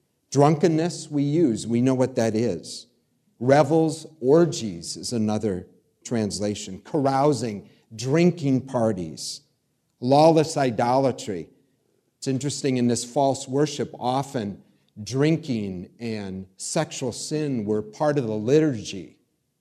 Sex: male